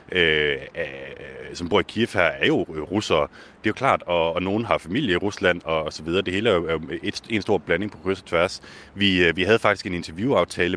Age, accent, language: 30-49, native, Danish